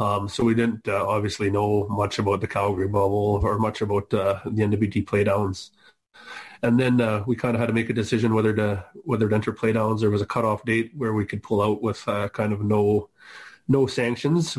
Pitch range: 105-115 Hz